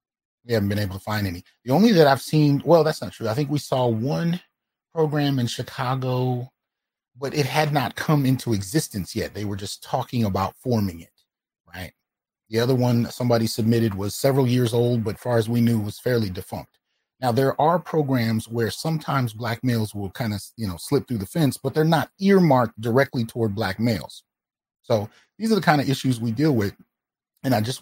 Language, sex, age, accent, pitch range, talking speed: English, male, 30-49, American, 110-135 Hz, 205 wpm